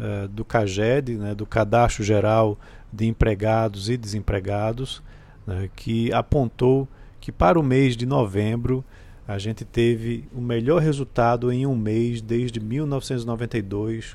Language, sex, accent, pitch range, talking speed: Portuguese, male, Brazilian, 110-135 Hz, 125 wpm